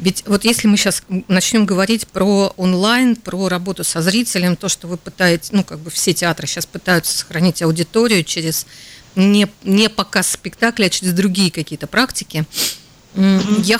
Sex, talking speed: female, 160 wpm